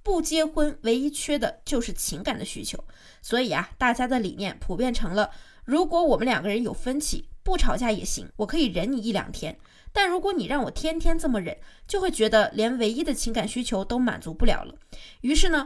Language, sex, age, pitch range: Chinese, female, 20-39, 225-315 Hz